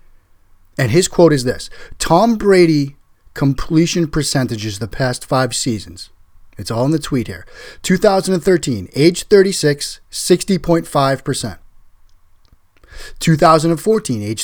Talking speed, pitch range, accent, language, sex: 105 wpm, 95-150 Hz, American, English, male